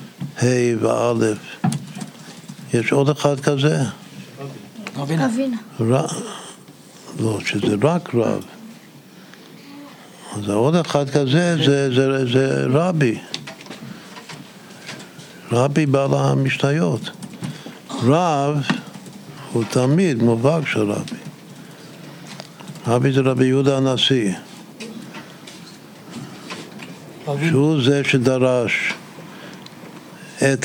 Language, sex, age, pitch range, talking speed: Hebrew, male, 60-79, 125-165 Hz, 70 wpm